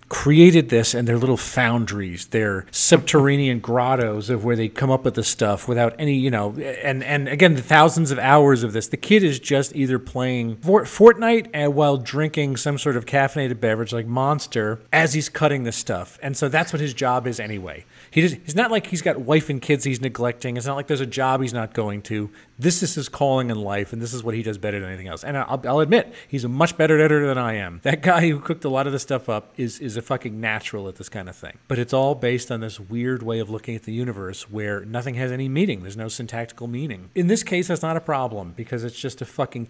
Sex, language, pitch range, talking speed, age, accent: male, English, 115-145 Hz, 245 wpm, 40-59, American